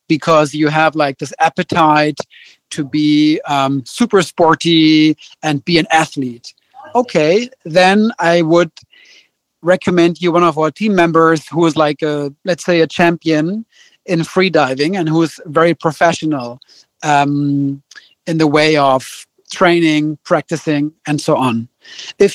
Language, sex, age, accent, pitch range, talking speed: English, male, 40-59, German, 155-180 Hz, 140 wpm